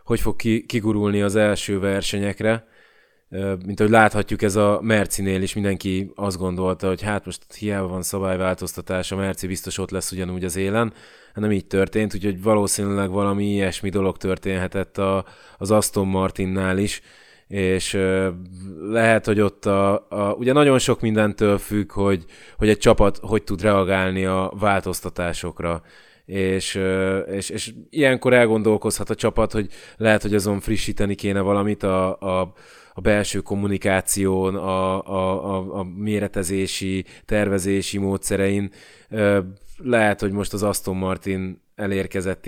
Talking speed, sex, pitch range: 140 wpm, male, 95-110 Hz